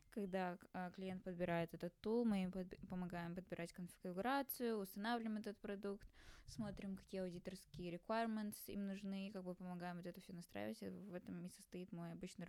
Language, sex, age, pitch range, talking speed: Russian, female, 10-29, 175-195 Hz, 155 wpm